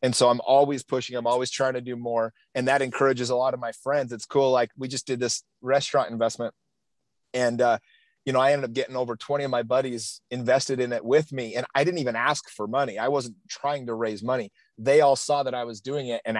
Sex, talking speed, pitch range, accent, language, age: male, 250 wpm, 120-140 Hz, American, English, 30-49